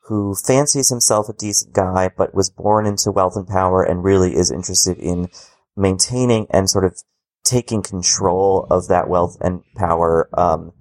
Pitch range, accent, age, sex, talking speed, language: 90-110 Hz, American, 30-49, male, 165 wpm, English